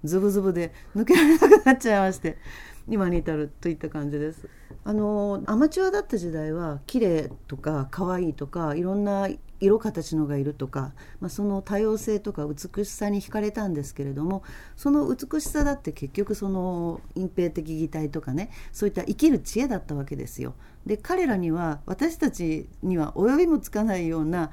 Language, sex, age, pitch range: Japanese, female, 40-59, 160-245 Hz